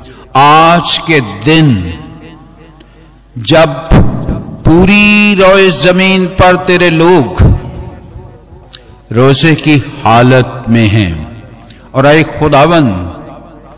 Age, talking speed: 50-69, 80 wpm